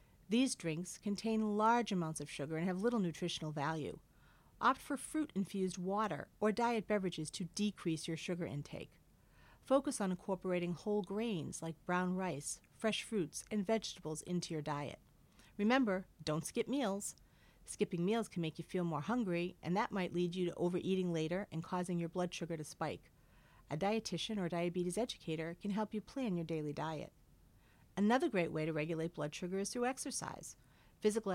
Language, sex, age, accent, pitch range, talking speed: English, female, 50-69, American, 170-215 Hz, 170 wpm